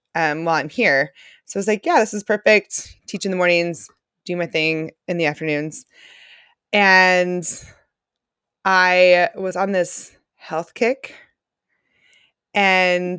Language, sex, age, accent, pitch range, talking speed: English, female, 20-39, American, 175-240 Hz, 135 wpm